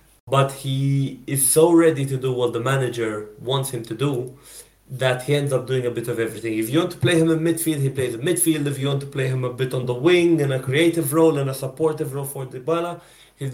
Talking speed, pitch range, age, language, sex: 255 wpm, 130-160 Hz, 30-49, English, male